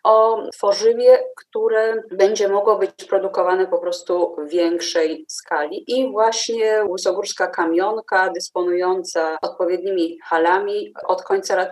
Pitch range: 165-250 Hz